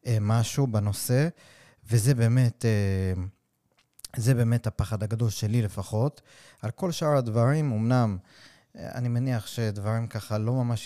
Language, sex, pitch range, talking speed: Hebrew, male, 105-125 Hz, 115 wpm